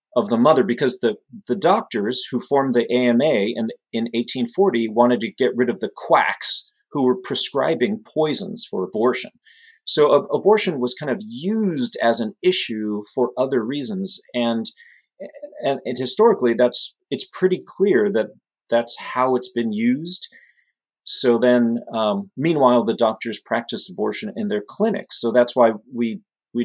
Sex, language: male, English